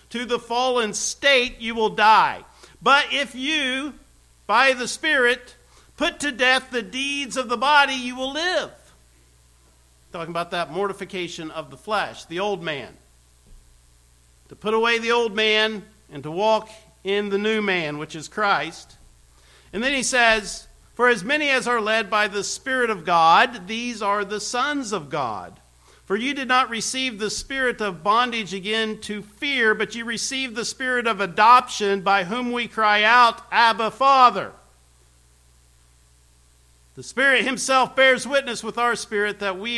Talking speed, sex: 160 wpm, male